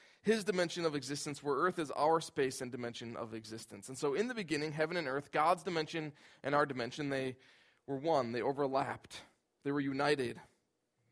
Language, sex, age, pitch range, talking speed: English, male, 20-39, 135-165 Hz, 185 wpm